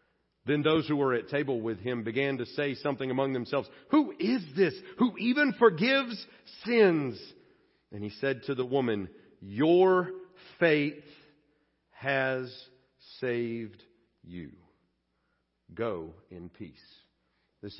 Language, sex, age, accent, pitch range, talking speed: English, male, 50-69, American, 140-190 Hz, 120 wpm